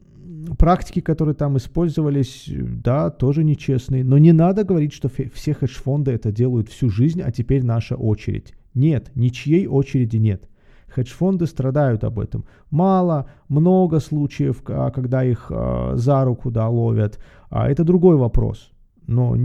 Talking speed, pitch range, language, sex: 135 wpm, 115-155 Hz, Russian, male